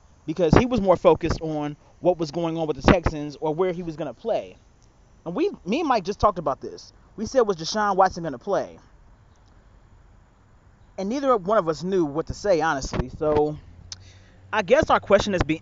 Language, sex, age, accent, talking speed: English, male, 30-49, American, 205 wpm